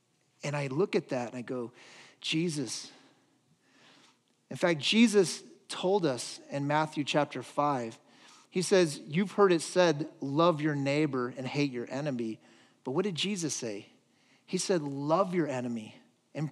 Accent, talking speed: American, 155 wpm